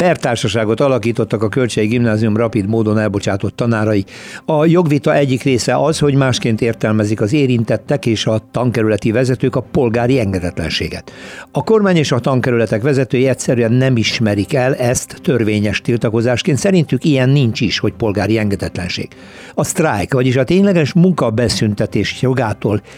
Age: 60-79